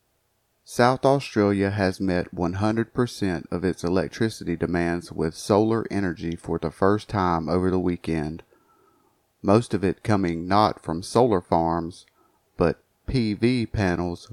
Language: English